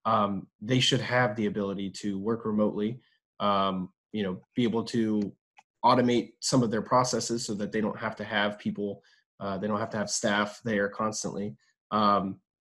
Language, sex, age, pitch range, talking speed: English, male, 20-39, 100-130 Hz, 180 wpm